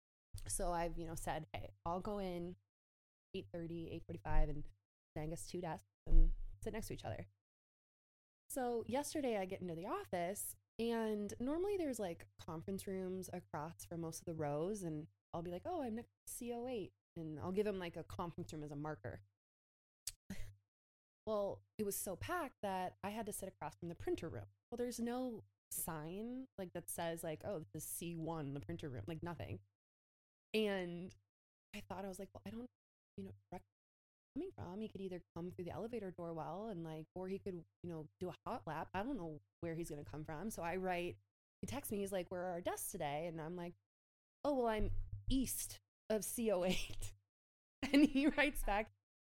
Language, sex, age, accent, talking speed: English, female, 20-39, American, 200 wpm